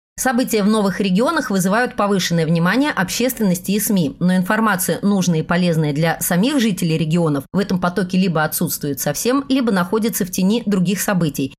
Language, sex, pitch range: Russian, female, 175-230 Hz